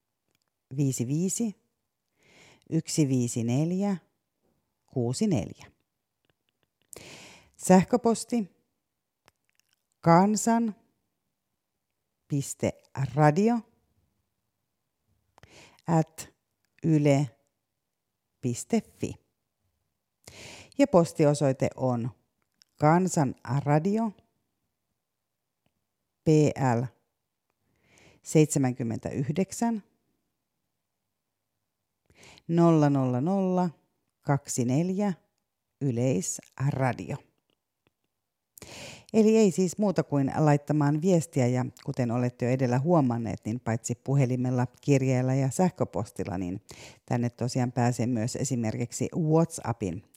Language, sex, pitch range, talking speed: Finnish, female, 120-165 Hz, 50 wpm